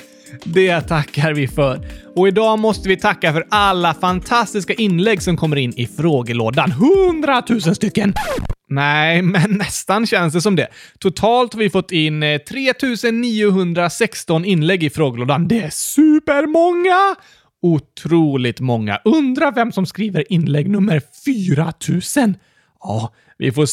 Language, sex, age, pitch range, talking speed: Swedish, male, 30-49, 140-230 Hz, 130 wpm